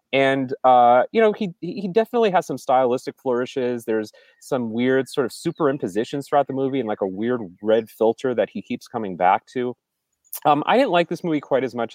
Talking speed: 205 wpm